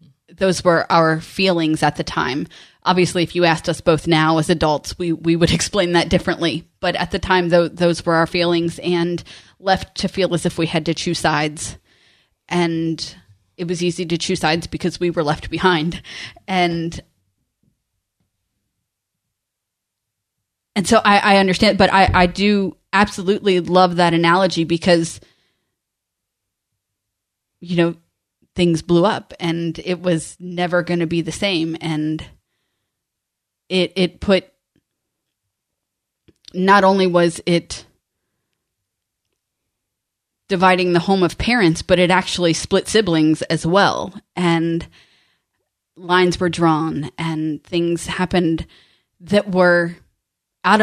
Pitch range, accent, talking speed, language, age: 160-185 Hz, American, 135 wpm, English, 20-39